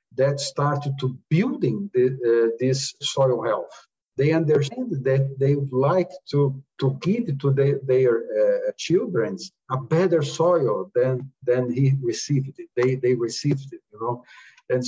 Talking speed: 155 wpm